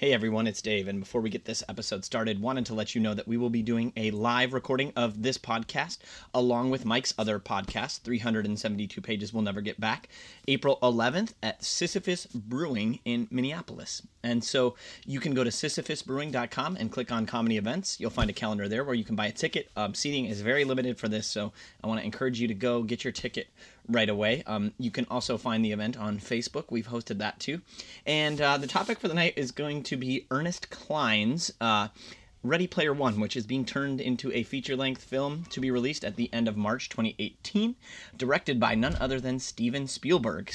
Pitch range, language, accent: 110-135 Hz, English, American